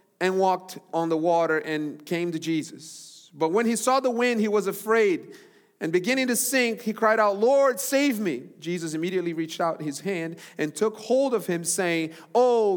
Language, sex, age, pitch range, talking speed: English, male, 40-59, 145-190 Hz, 195 wpm